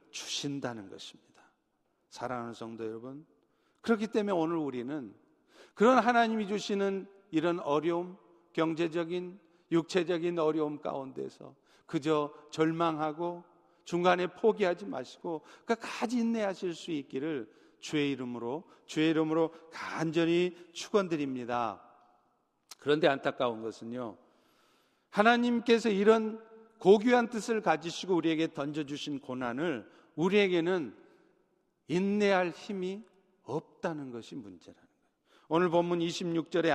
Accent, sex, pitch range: native, male, 155-210 Hz